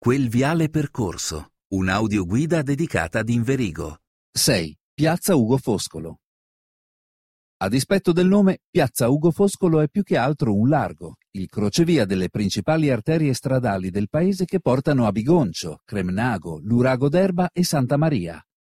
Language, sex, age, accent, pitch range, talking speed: Italian, male, 50-69, native, 105-160 Hz, 135 wpm